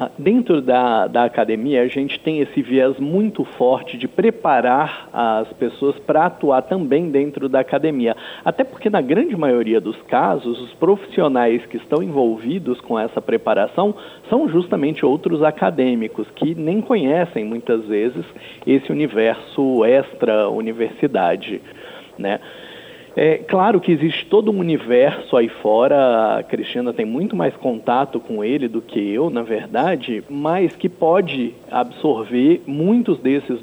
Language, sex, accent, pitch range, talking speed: Portuguese, male, Brazilian, 115-165 Hz, 135 wpm